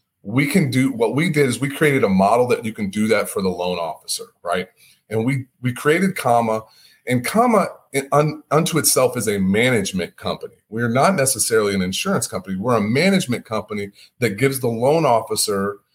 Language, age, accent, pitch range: English, 30-49, American, 110-150 Hz